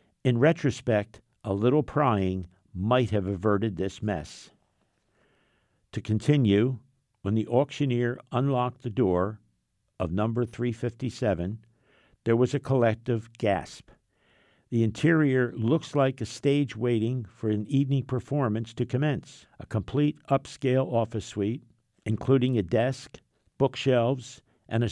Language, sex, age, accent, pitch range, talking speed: English, male, 60-79, American, 105-130 Hz, 120 wpm